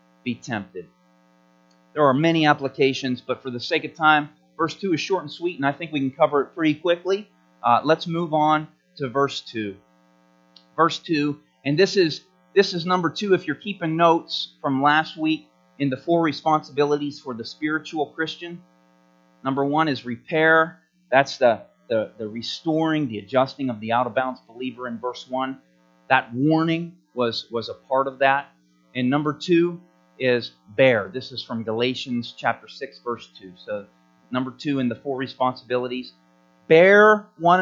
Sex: male